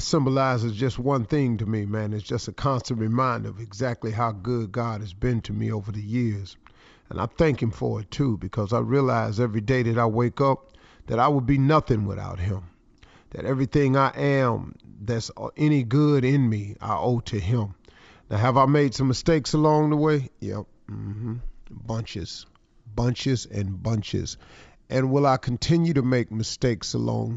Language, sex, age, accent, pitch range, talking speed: English, male, 40-59, American, 110-135 Hz, 185 wpm